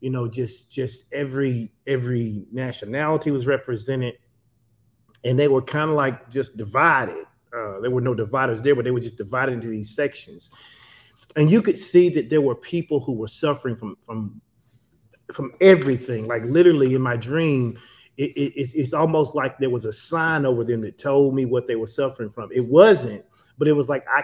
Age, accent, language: 30-49, American, English